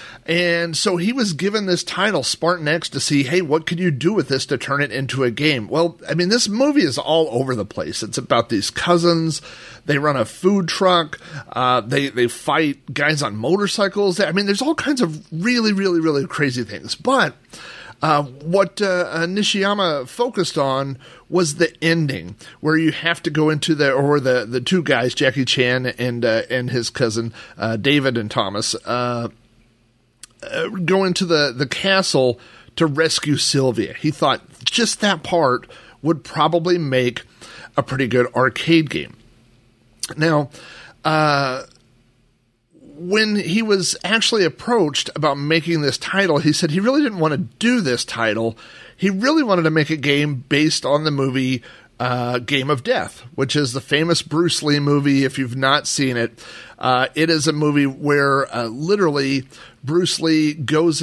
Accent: American